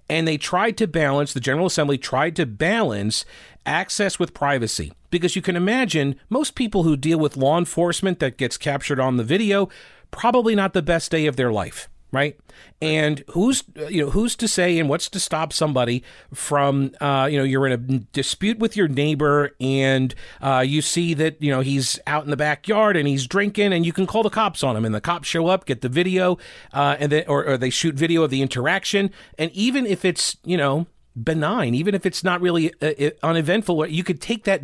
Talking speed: 215 wpm